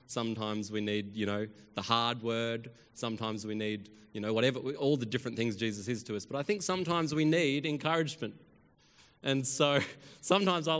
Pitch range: 115-155 Hz